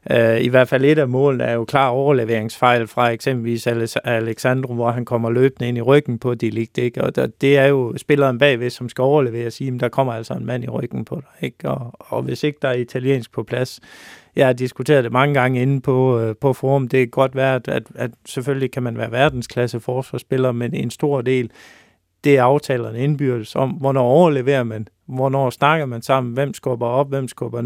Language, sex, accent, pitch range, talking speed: Danish, male, native, 120-135 Hz, 210 wpm